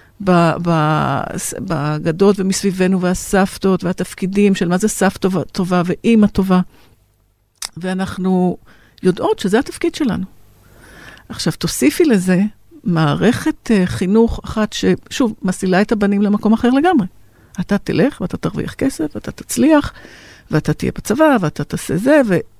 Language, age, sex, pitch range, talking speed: Hebrew, 50-69, female, 170-220 Hz, 115 wpm